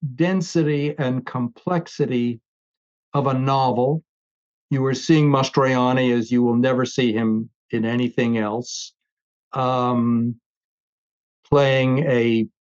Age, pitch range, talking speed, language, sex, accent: 50-69, 120-145 Hz, 105 wpm, English, male, American